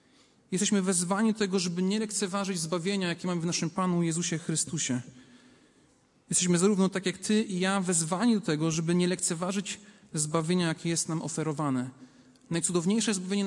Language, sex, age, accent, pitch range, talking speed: Polish, male, 40-59, native, 170-215 Hz, 155 wpm